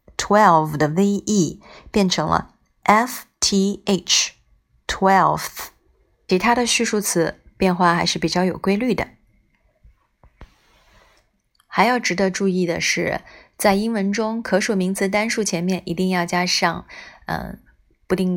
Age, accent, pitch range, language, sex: 20-39, native, 175-215 Hz, Chinese, female